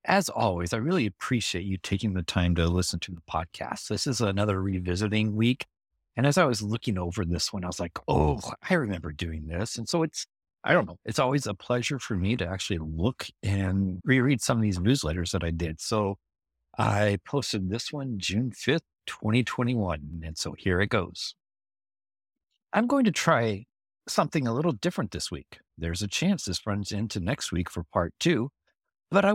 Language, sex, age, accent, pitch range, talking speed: English, male, 50-69, American, 90-125 Hz, 195 wpm